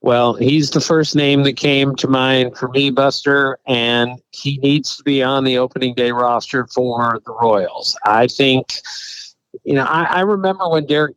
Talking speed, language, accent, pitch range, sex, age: 185 wpm, English, American, 130-165 Hz, male, 50-69